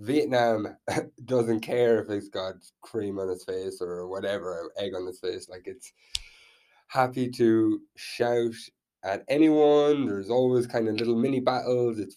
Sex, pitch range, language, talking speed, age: male, 95-140 Hz, English, 155 wpm, 20-39